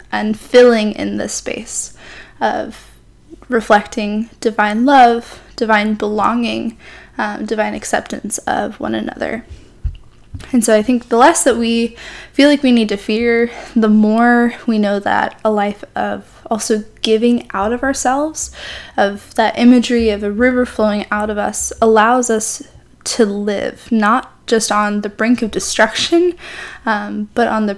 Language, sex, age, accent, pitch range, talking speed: English, female, 10-29, American, 210-235 Hz, 150 wpm